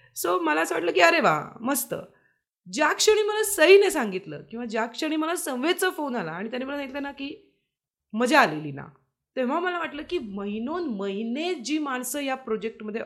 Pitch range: 210-315 Hz